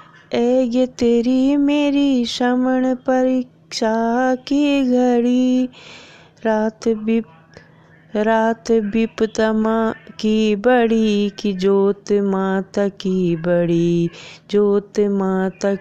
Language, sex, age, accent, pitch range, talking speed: Hindi, female, 20-39, native, 170-230 Hz, 80 wpm